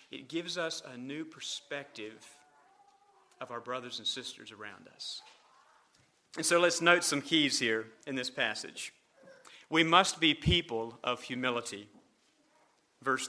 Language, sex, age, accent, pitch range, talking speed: English, male, 40-59, American, 140-180 Hz, 135 wpm